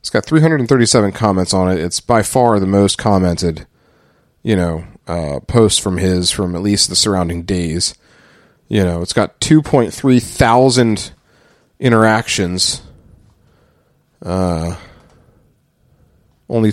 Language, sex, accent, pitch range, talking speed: English, male, American, 95-130 Hz, 120 wpm